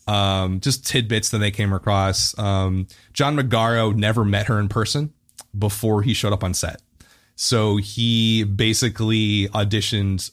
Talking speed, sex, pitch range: 145 wpm, male, 100-120 Hz